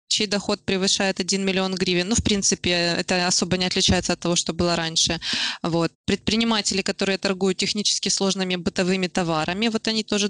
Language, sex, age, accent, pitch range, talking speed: Russian, female, 20-39, native, 185-210 Hz, 170 wpm